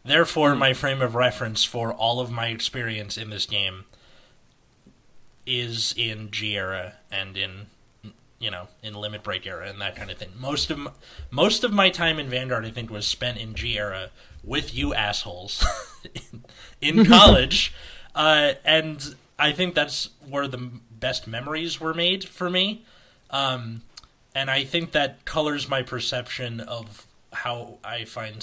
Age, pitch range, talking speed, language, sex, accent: 30-49, 105-135 Hz, 165 wpm, English, male, American